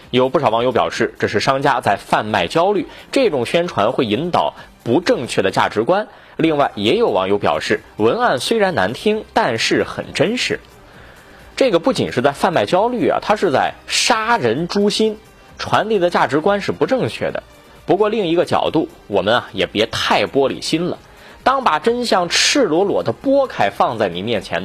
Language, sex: Chinese, male